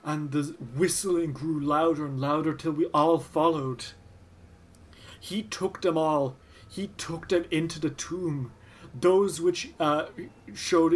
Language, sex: English, male